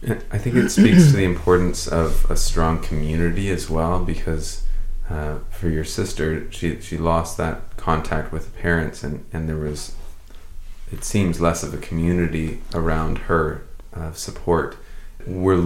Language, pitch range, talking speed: English, 80-90 Hz, 155 wpm